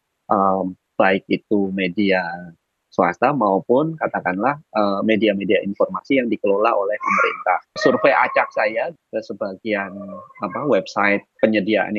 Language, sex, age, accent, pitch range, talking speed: Indonesian, male, 20-39, native, 100-115 Hz, 105 wpm